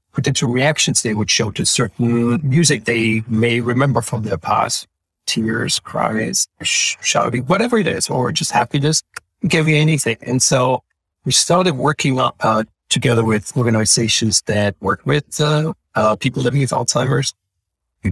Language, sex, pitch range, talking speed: English, male, 110-140 Hz, 155 wpm